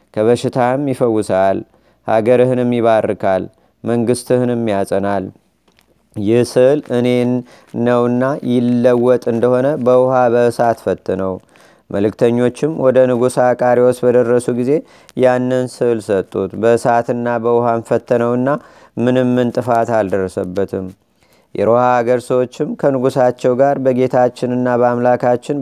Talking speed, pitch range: 85 wpm, 115-125 Hz